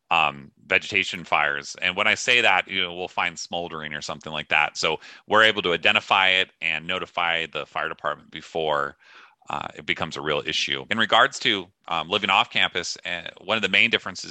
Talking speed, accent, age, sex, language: 200 wpm, American, 30-49, male, English